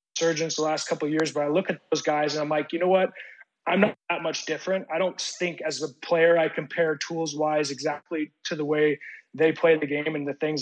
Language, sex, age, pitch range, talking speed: English, male, 20-39, 150-175 Hz, 250 wpm